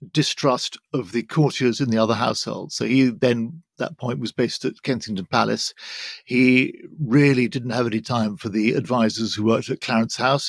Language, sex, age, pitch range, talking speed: English, male, 50-69, 120-155 Hz, 190 wpm